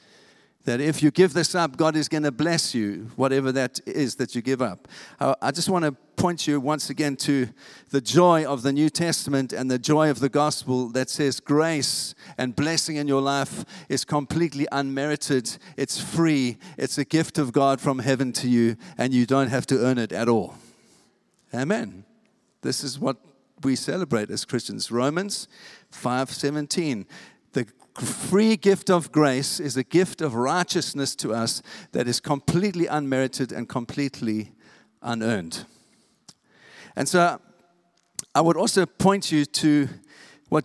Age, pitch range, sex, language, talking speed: 50-69, 130-170 Hz, male, English, 160 wpm